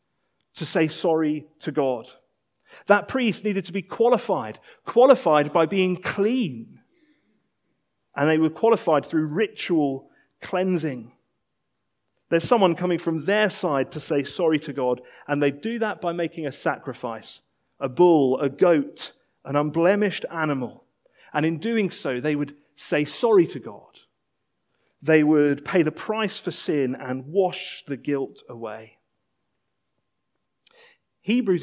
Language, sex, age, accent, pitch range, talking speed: English, male, 40-59, British, 150-210 Hz, 135 wpm